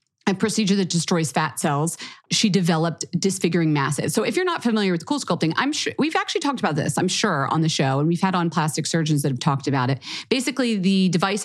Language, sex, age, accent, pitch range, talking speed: English, female, 30-49, American, 155-195 Hz, 230 wpm